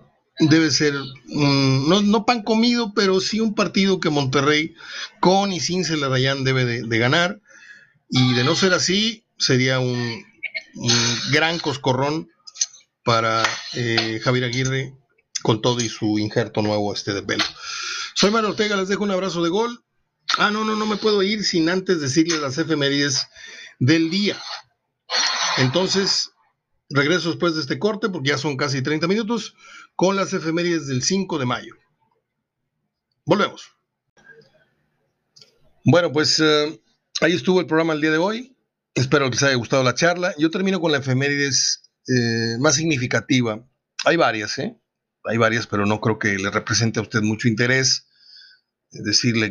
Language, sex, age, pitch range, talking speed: Spanish, male, 50-69, 120-185 Hz, 160 wpm